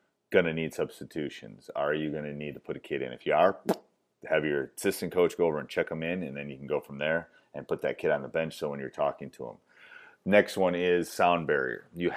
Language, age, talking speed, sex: English, 30-49, 250 wpm, male